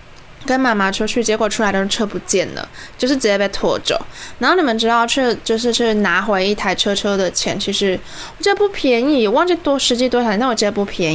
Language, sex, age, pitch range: Chinese, female, 10-29, 210-285 Hz